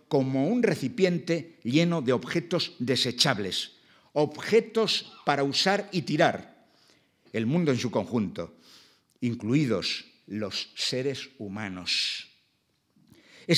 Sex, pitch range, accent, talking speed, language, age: male, 120-160 Hz, Spanish, 95 wpm, Spanish, 60-79